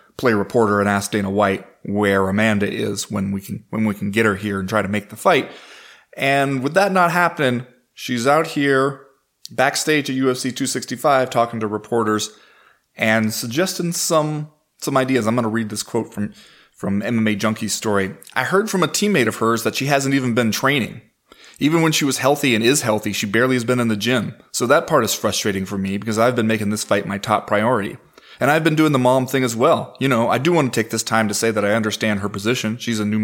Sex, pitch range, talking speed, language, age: male, 105-135 Hz, 230 wpm, English, 30-49